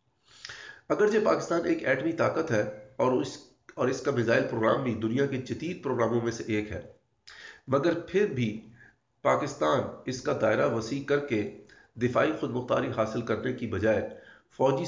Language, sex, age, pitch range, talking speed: Urdu, male, 40-59, 110-135 Hz, 160 wpm